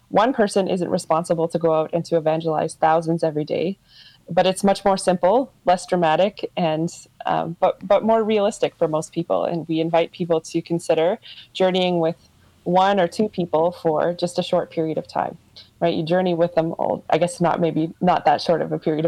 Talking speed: 200 wpm